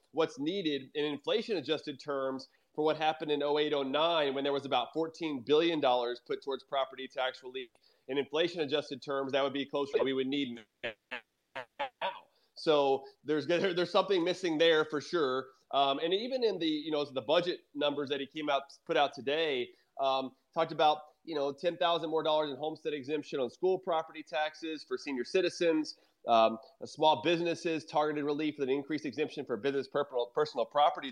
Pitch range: 140-170 Hz